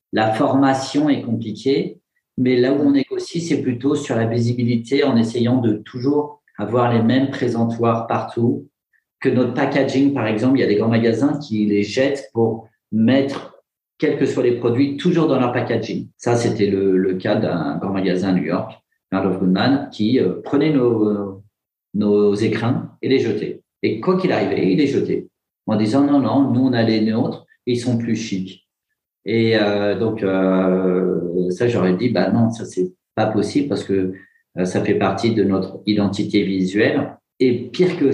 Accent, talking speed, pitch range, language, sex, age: French, 185 wpm, 105-135 Hz, French, male, 40-59